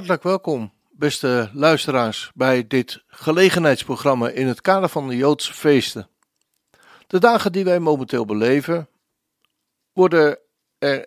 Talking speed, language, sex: 120 wpm, Dutch, male